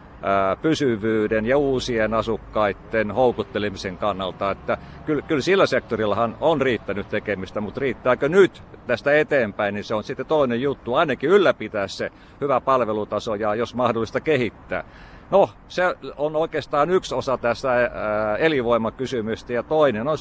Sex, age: male, 50-69